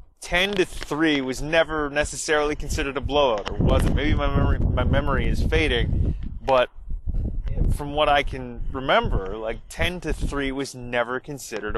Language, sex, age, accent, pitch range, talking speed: English, male, 20-39, American, 110-135 Hz, 160 wpm